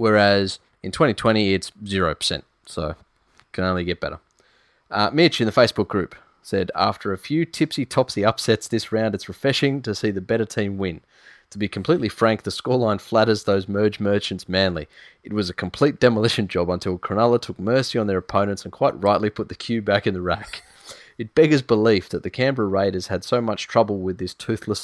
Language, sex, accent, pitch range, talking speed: English, male, Australian, 95-115 Hz, 195 wpm